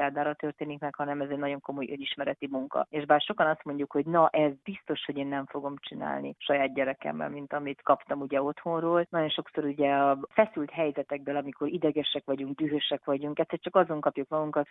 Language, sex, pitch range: Hungarian, female, 140-160 Hz